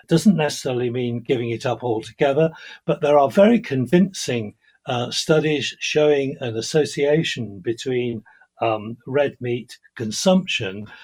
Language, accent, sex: English, British, male